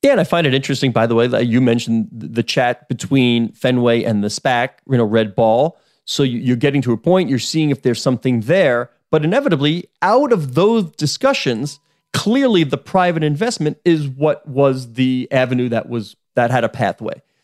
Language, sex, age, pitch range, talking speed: English, male, 30-49, 120-160 Hz, 195 wpm